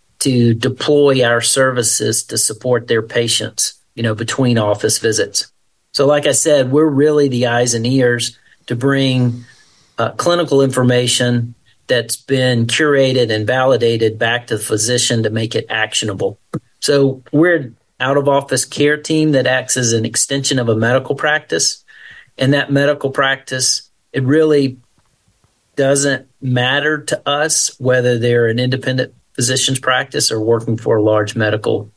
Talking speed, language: 145 wpm, English